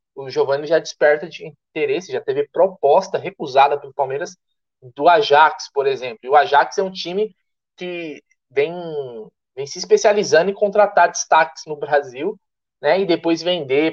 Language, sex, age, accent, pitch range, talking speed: Portuguese, male, 20-39, Brazilian, 165-235 Hz, 155 wpm